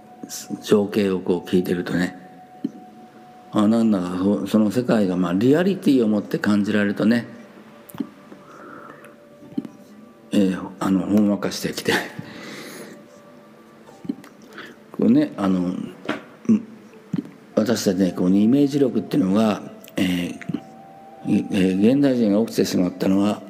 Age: 50-69